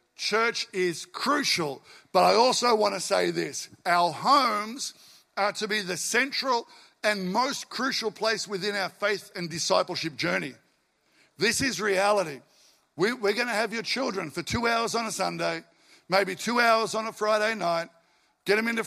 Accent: Australian